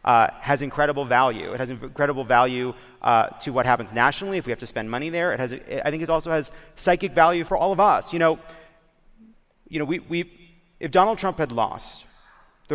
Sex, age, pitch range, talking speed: male, 30-49, 120-160 Hz, 215 wpm